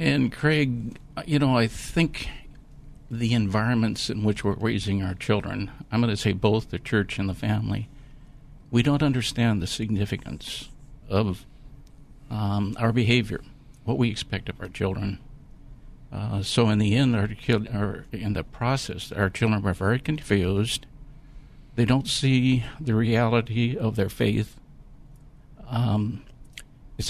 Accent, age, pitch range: American, 60-79, 105-135 Hz